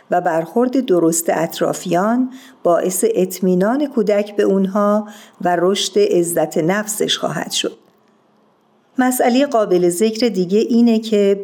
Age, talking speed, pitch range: 50-69, 110 wpm, 180-225 Hz